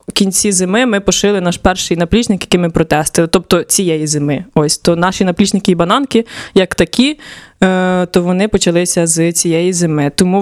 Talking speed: 165 wpm